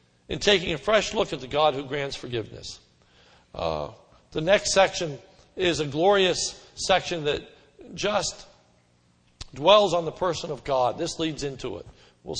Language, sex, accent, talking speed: English, male, American, 155 wpm